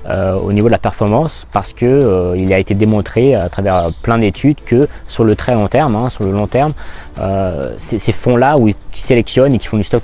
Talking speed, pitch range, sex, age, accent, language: 235 wpm, 95-115 Hz, male, 20-39, French, French